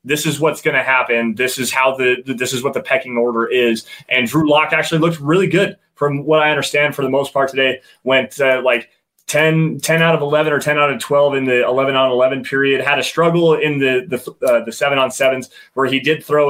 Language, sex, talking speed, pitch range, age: English, male, 245 wpm, 130-150 Hz, 20-39